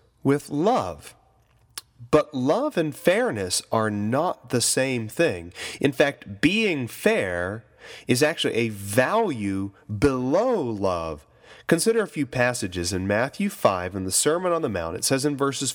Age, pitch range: 30-49, 115-160 Hz